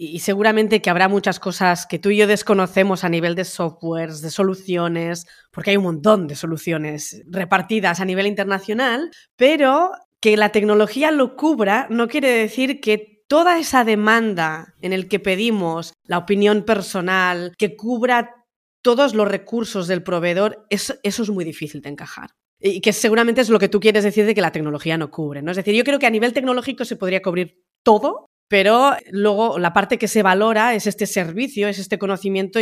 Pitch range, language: 170-215 Hz, Spanish